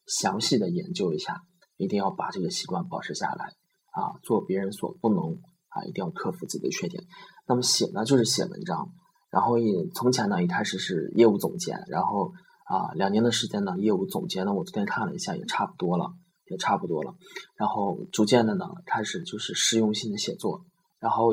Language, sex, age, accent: Chinese, male, 20-39, native